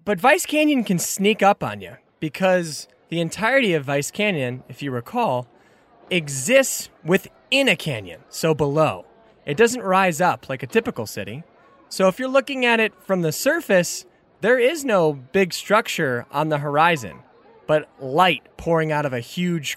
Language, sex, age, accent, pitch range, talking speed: English, male, 20-39, American, 140-190 Hz, 165 wpm